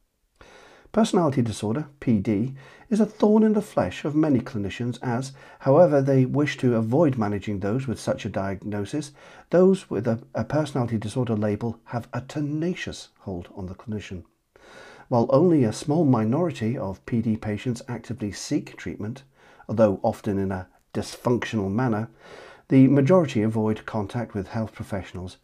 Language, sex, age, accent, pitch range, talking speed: English, male, 50-69, British, 105-135 Hz, 145 wpm